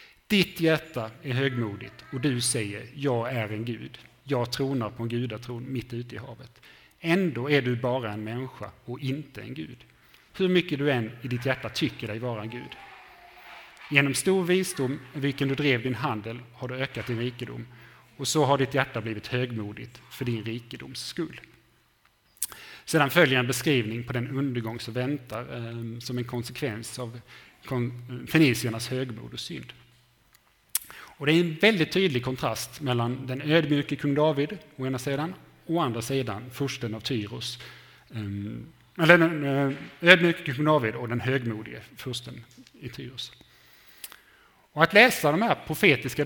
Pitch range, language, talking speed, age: 120-145 Hz, Swedish, 155 wpm, 30-49